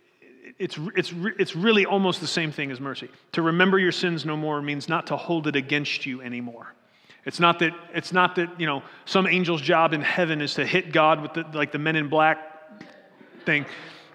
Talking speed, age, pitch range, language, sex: 210 wpm, 30-49, 155-195 Hz, English, male